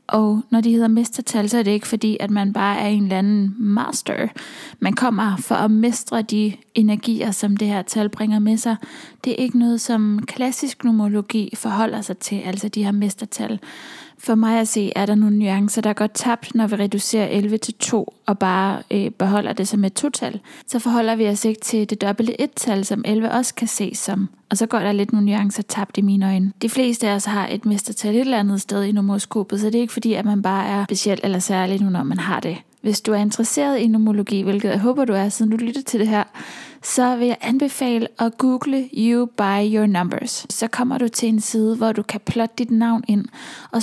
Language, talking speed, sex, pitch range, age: English, 235 wpm, female, 205-235 Hz, 20-39